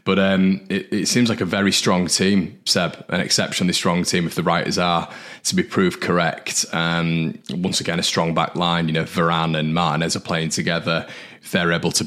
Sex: male